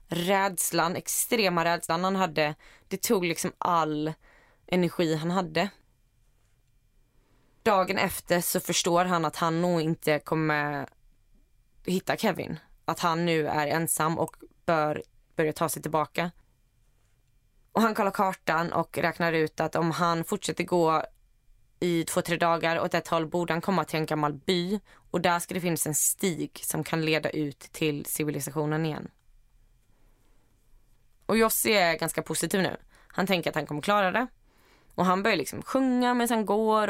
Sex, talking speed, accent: female, 155 wpm, native